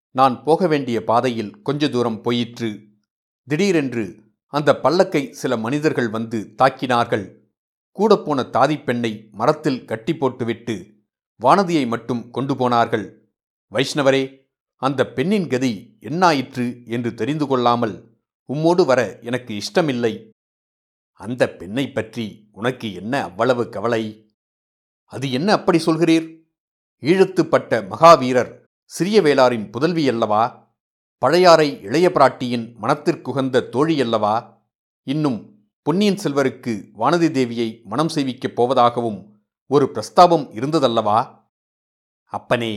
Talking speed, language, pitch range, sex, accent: 95 wpm, Tamil, 115-155 Hz, male, native